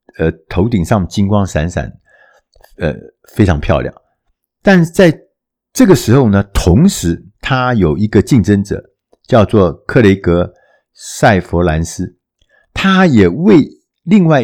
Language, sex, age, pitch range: Chinese, male, 50-69, 95-135 Hz